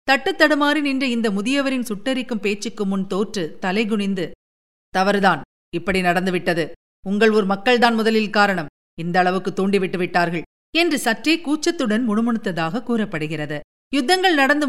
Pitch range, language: 195-270 Hz, Tamil